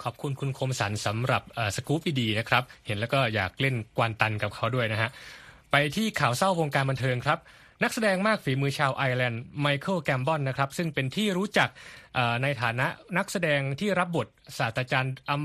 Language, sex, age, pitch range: Thai, male, 20-39, 115-155 Hz